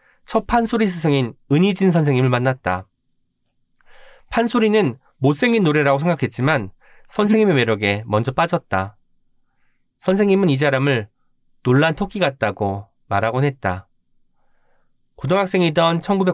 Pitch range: 120-175 Hz